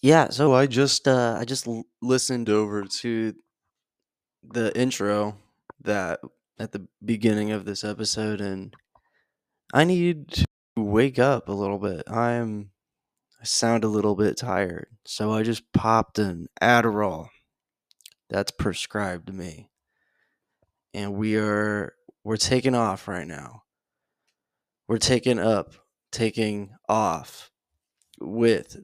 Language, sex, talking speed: English, male, 120 wpm